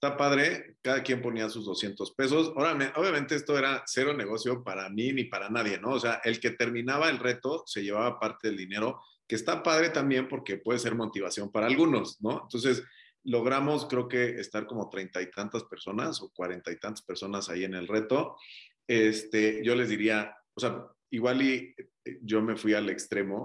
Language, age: Spanish, 40-59